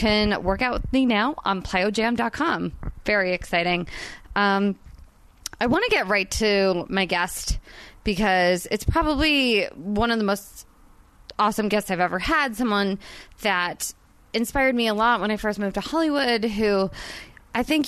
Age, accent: 20-39, American